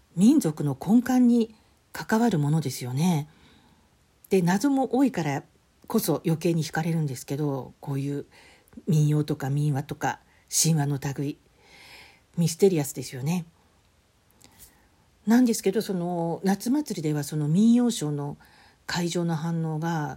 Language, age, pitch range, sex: Japanese, 50-69, 145-195 Hz, female